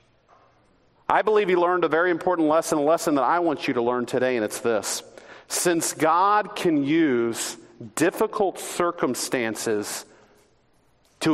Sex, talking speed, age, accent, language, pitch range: male, 145 wpm, 40-59, American, English, 165-230 Hz